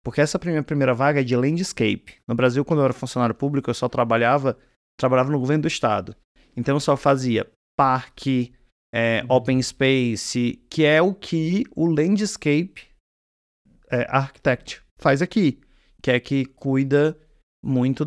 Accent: Brazilian